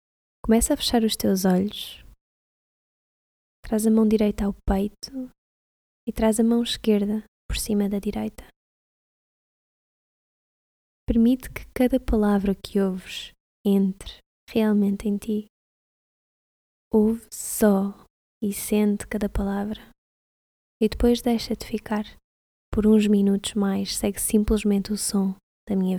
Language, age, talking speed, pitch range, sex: Portuguese, 20-39, 120 wpm, 195-220 Hz, female